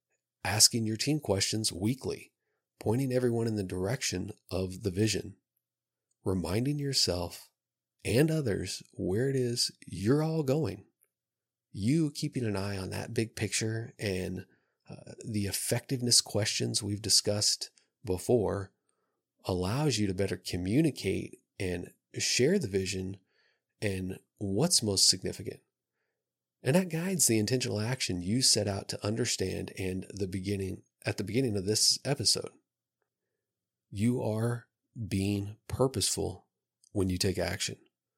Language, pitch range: English, 95-115 Hz